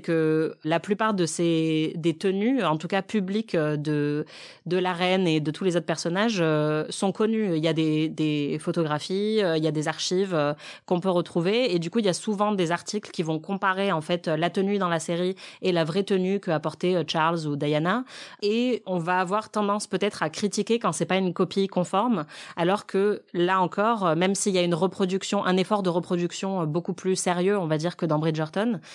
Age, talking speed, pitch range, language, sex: 30-49, 220 wpm, 165-195 Hz, French, female